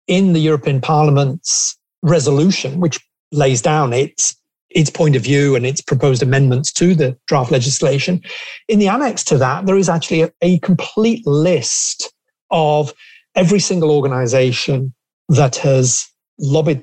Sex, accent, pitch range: male, British, 135-165 Hz